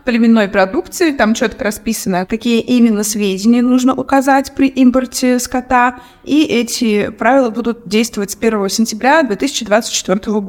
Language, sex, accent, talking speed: Russian, female, native, 125 wpm